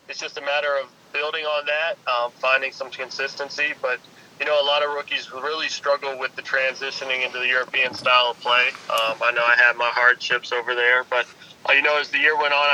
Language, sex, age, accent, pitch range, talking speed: English, male, 20-39, American, 125-145 Hz, 220 wpm